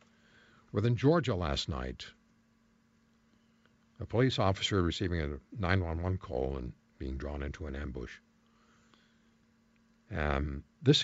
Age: 60-79